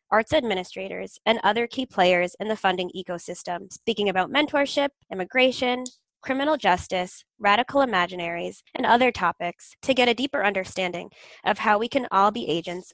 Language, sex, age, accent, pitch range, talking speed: English, female, 20-39, American, 190-255 Hz, 155 wpm